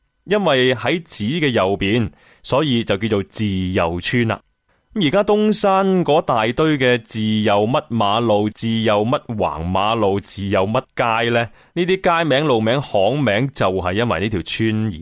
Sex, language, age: male, Chinese, 20-39